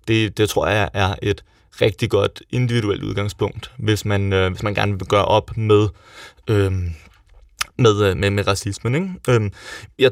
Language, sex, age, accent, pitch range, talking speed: Danish, male, 20-39, native, 100-125 Hz, 165 wpm